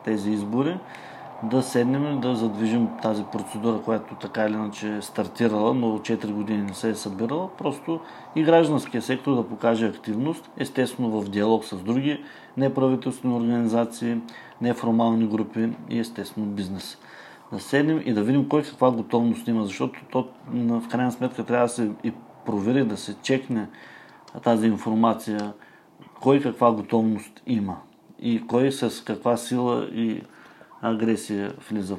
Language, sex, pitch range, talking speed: Bulgarian, male, 110-125 Hz, 145 wpm